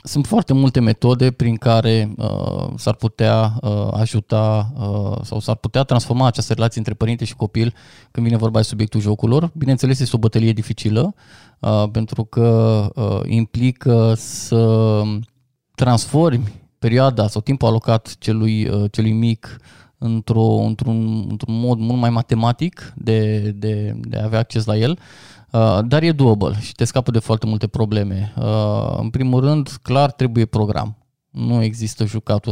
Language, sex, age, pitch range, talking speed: Romanian, male, 20-39, 110-125 Hz, 155 wpm